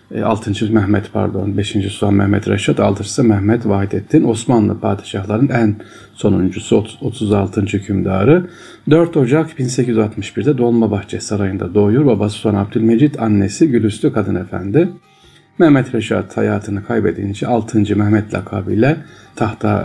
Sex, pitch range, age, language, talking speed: male, 100-115 Hz, 40-59, Turkish, 110 wpm